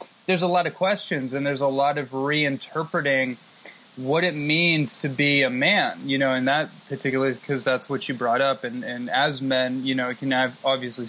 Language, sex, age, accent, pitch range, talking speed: English, male, 20-39, American, 140-165 Hz, 205 wpm